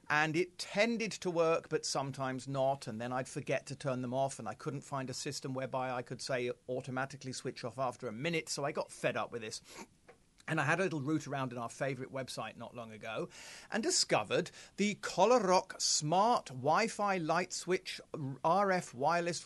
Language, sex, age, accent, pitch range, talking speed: English, male, 40-59, British, 125-170 Hz, 195 wpm